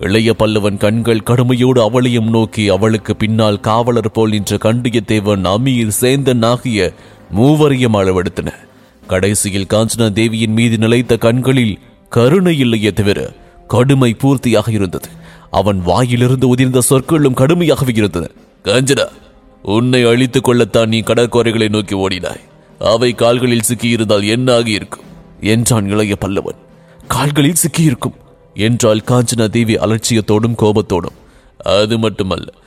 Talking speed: 100 wpm